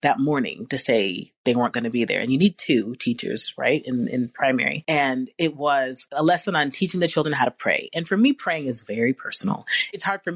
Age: 30-49